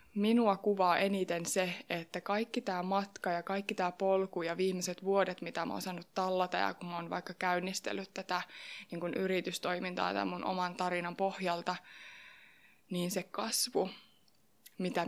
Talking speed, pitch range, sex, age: 150 wpm, 180-210 Hz, female, 20-39